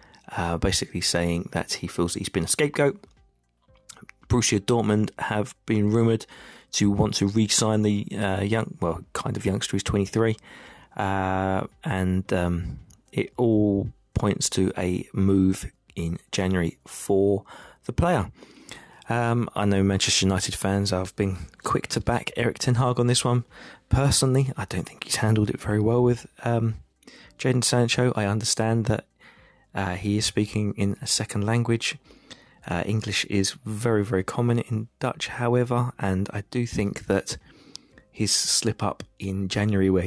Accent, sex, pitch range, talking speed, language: British, male, 90-110 Hz, 155 wpm, English